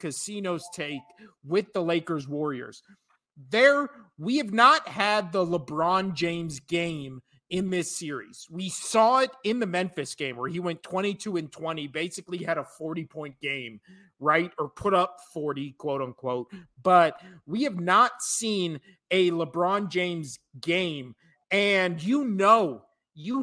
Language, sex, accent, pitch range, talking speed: English, male, American, 155-195 Hz, 145 wpm